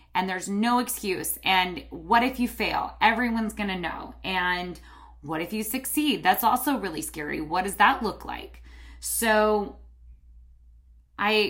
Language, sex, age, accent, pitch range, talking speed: English, female, 20-39, American, 160-225 Hz, 145 wpm